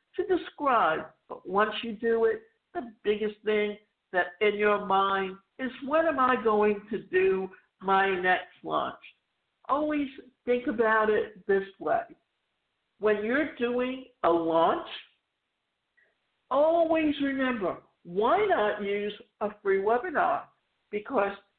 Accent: American